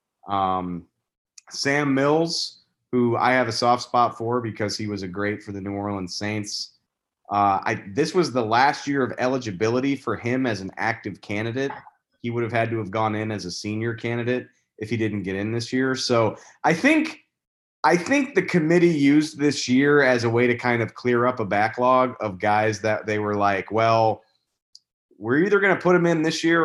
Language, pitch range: English, 105-140 Hz